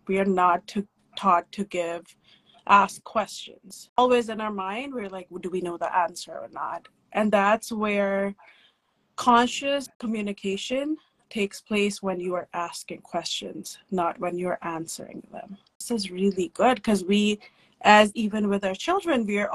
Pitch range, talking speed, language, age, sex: 200-250 Hz, 165 wpm, English, 20-39, female